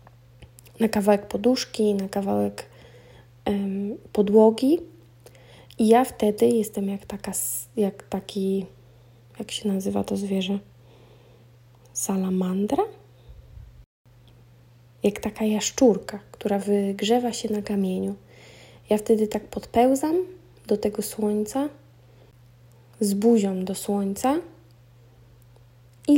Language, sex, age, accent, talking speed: Polish, female, 20-39, native, 95 wpm